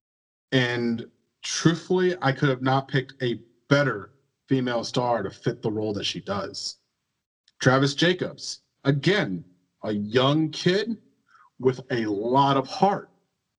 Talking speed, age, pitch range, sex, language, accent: 130 wpm, 40-59, 120-150 Hz, male, English, American